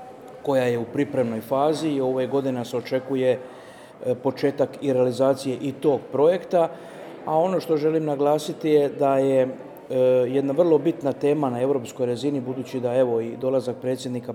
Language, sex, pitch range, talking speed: Croatian, male, 130-150 Hz, 155 wpm